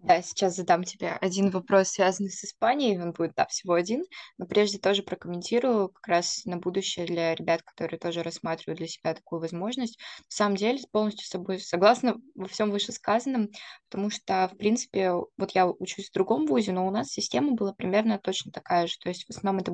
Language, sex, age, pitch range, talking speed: Russian, female, 20-39, 180-220 Hz, 195 wpm